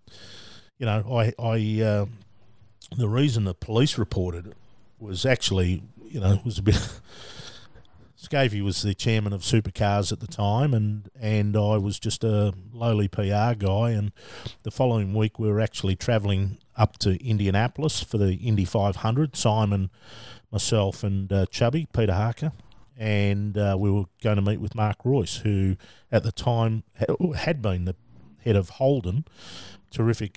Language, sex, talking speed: English, male, 155 wpm